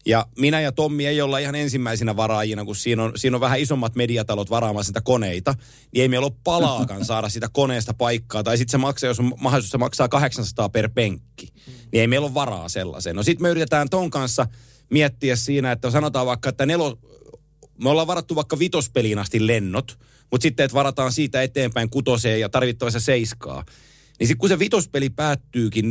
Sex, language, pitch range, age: male, Finnish, 115-145 Hz, 30-49